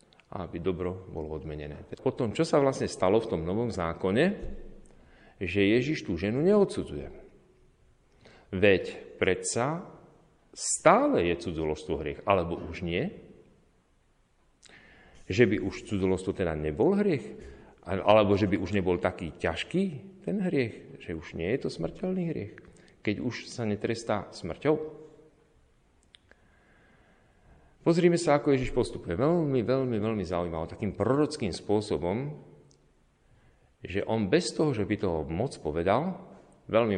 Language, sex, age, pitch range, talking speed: Slovak, male, 40-59, 90-130 Hz, 125 wpm